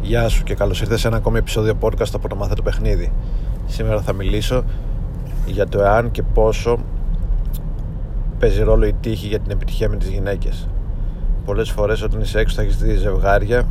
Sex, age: male, 30-49